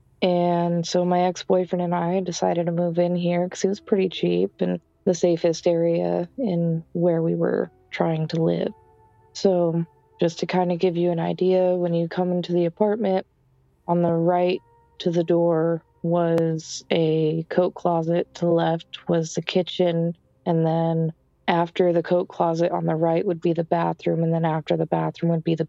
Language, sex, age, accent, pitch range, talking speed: English, female, 20-39, American, 155-175 Hz, 185 wpm